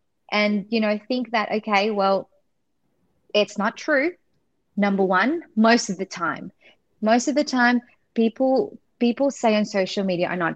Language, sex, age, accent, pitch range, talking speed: English, female, 20-39, Australian, 195-245 Hz, 160 wpm